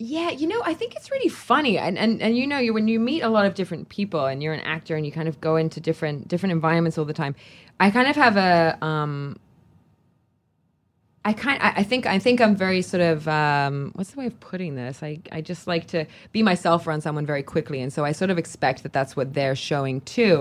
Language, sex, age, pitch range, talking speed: English, female, 20-39, 145-180 Hz, 245 wpm